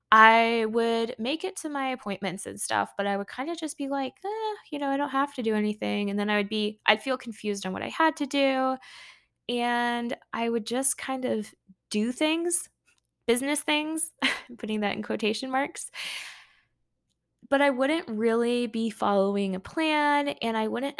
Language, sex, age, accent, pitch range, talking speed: English, female, 10-29, American, 195-265 Hz, 190 wpm